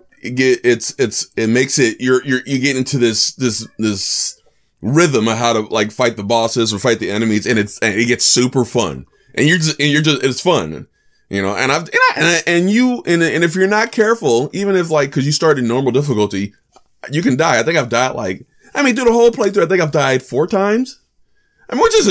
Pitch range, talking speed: 110-165 Hz, 245 wpm